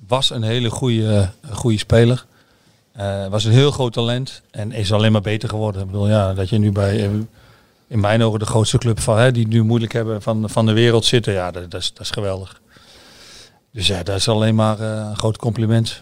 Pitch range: 105-115 Hz